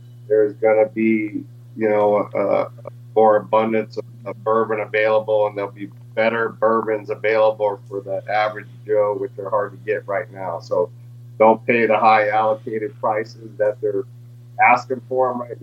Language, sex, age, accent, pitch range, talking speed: English, male, 40-59, American, 110-125 Hz, 165 wpm